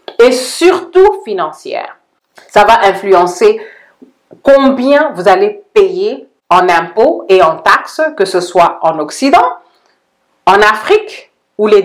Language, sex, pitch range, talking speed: French, female, 190-300 Hz, 120 wpm